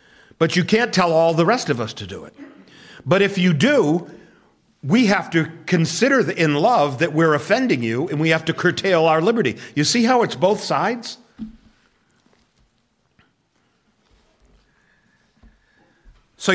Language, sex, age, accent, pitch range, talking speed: English, male, 50-69, American, 125-170 Hz, 145 wpm